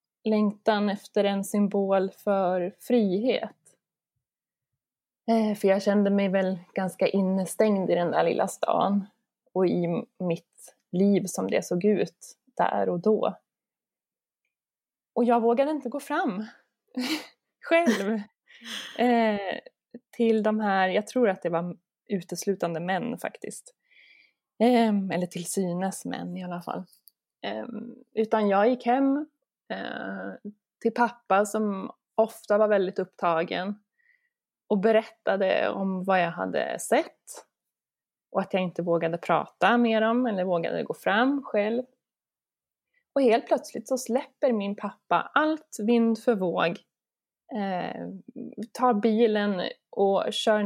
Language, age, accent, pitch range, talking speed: Swedish, 20-39, native, 190-240 Hz, 125 wpm